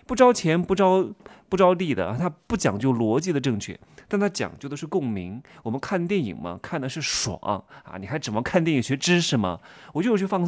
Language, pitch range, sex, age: Chinese, 115-190 Hz, male, 30-49